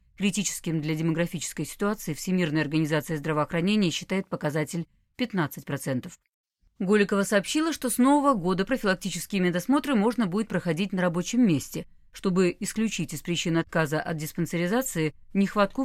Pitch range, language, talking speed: 160-220 Hz, Russian, 120 wpm